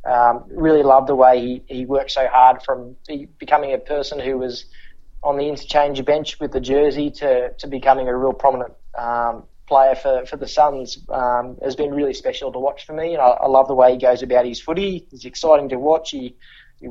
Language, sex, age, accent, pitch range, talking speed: English, male, 20-39, Australian, 125-150 Hz, 215 wpm